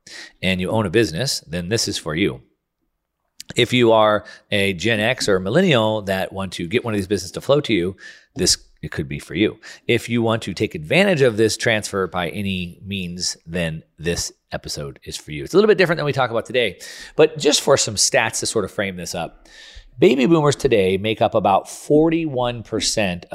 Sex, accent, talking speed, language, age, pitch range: male, American, 210 wpm, English, 40-59, 95-135 Hz